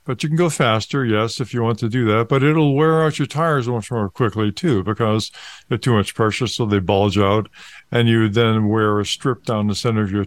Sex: male